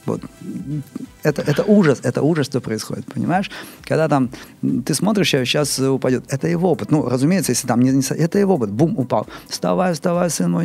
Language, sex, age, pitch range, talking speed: Russian, male, 30-49, 115-150 Hz, 185 wpm